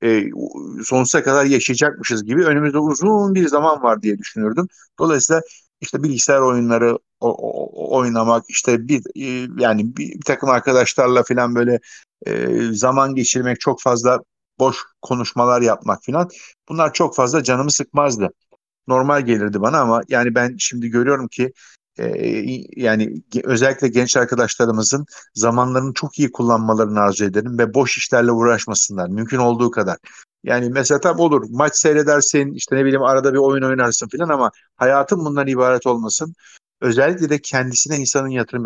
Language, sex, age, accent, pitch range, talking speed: Turkish, male, 50-69, native, 120-145 Hz, 145 wpm